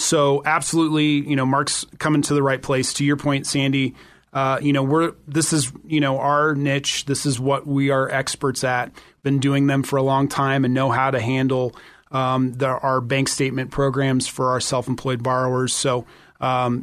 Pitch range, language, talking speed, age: 130-150 Hz, English, 195 wpm, 30-49